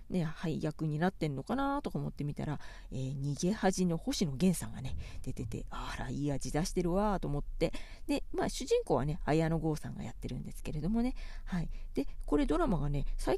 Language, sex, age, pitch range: Japanese, female, 40-59, 150-230 Hz